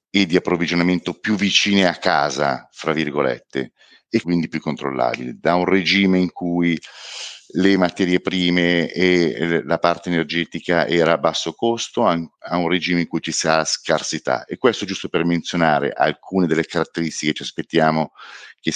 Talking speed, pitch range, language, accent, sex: 155 wpm, 80-90 Hz, English, Italian, male